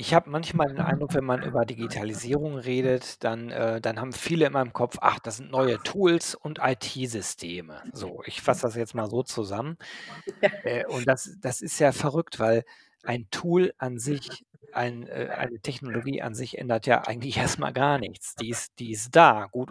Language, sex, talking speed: German, male, 185 wpm